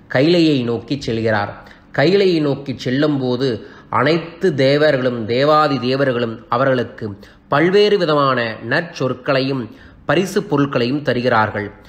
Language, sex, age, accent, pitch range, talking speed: Tamil, male, 30-49, native, 125-160 Hz, 90 wpm